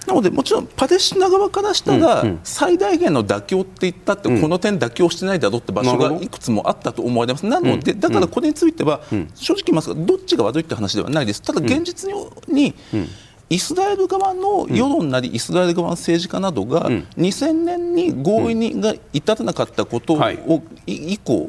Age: 40-59